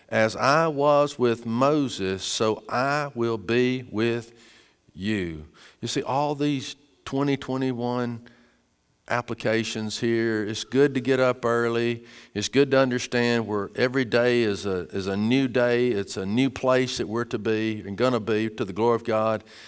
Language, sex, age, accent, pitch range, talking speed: English, male, 50-69, American, 110-130 Hz, 170 wpm